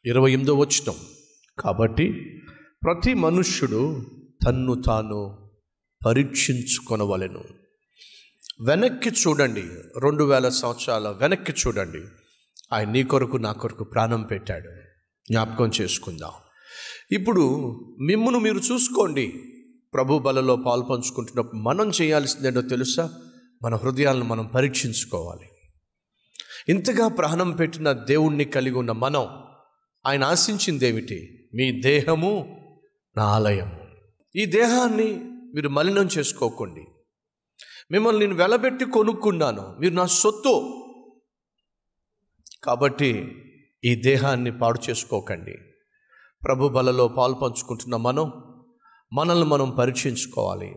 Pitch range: 120-180 Hz